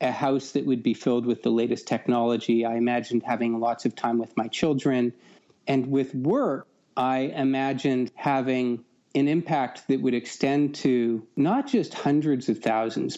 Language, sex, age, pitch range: English, male, 40-59, 120-145 Hz